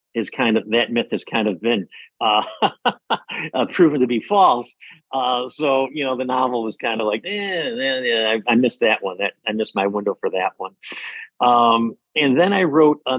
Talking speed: 210 wpm